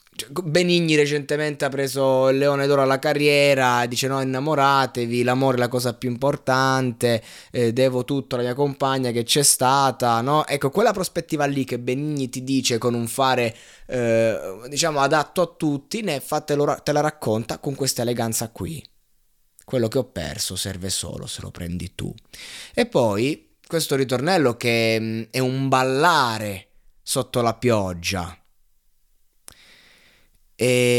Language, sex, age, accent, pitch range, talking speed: Italian, male, 20-39, native, 110-140 Hz, 145 wpm